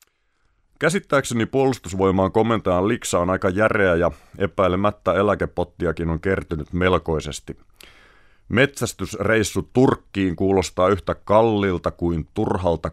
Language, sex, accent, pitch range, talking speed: Finnish, male, native, 85-105 Hz, 95 wpm